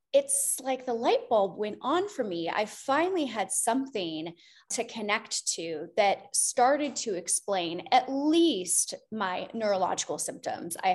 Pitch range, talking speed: 190-240 Hz, 140 wpm